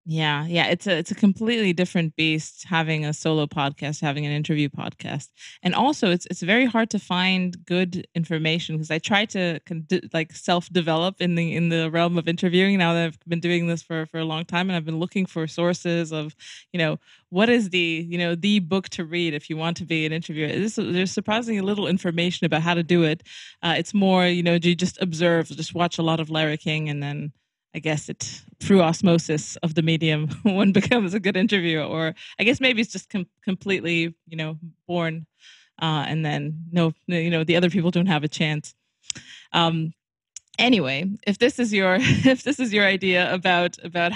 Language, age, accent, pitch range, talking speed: English, 20-39, American, 160-190 Hz, 210 wpm